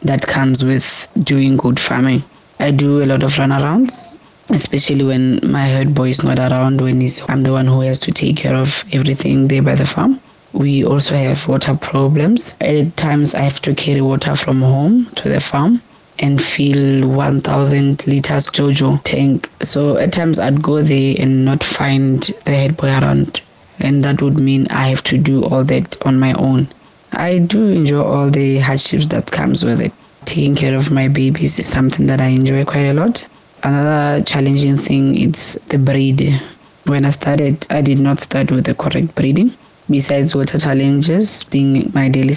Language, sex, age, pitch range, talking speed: English, female, 20-39, 135-150 Hz, 185 wpm